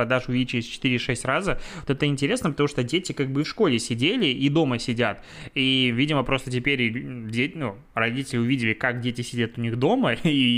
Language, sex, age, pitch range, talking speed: Russian, male, 20-39, 120-145 Hz, 180 wpm